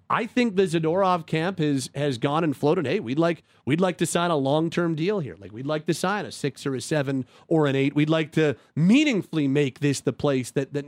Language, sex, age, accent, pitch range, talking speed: English, male, 40-59, American, 135-170 Hz, 245 wpm